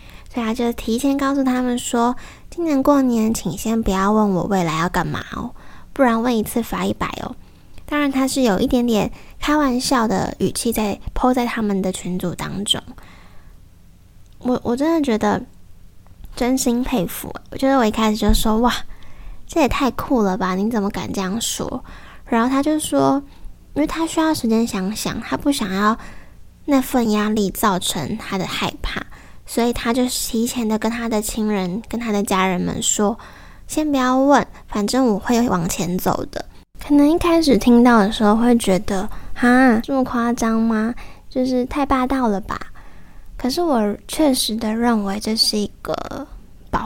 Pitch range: 205-255 Hz